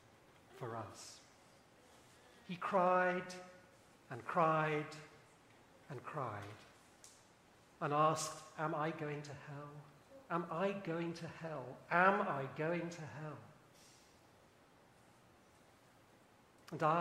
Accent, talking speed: British, 90 wpm